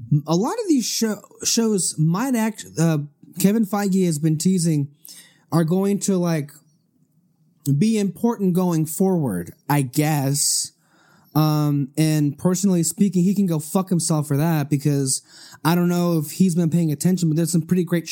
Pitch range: 155-195 Hz